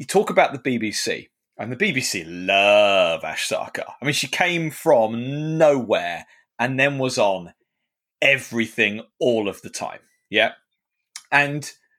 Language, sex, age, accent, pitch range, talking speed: English, male, 40-59, British, 125-165 Hz, 140 wpm